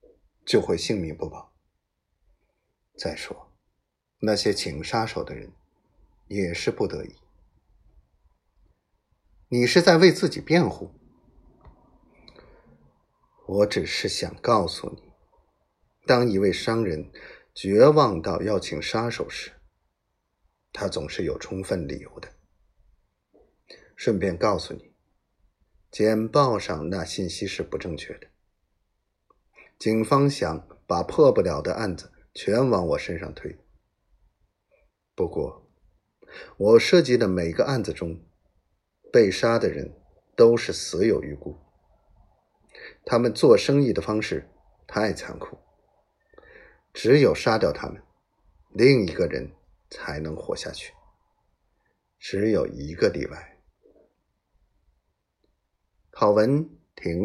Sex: male